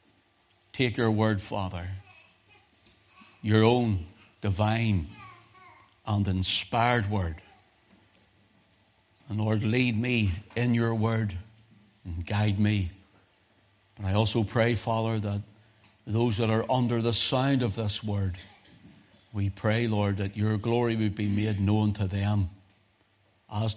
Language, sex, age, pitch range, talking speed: English, male, 60-79, 100-115 Hz, 120 wpm